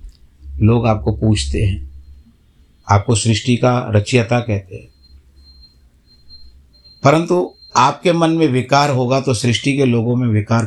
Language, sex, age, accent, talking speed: Hindi, male, 60-79, native, 125 wpm